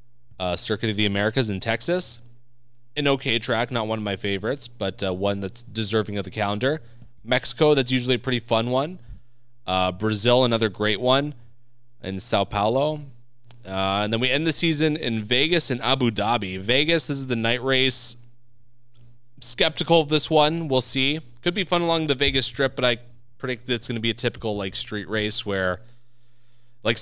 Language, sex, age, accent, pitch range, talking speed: English, male, 20-39, American, 110-125 Hz, 190 wpm